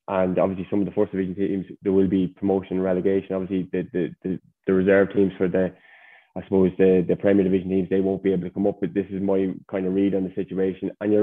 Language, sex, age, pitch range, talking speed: English, male, 20-39, 90-100 Hz, 260 wpm